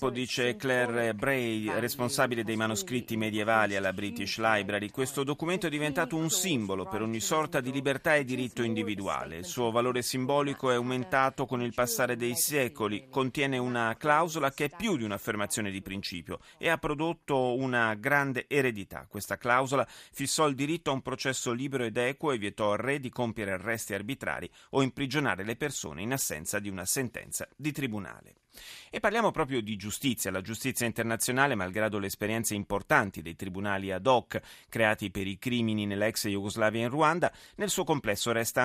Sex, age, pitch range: male, 30-49, 105-135 Hz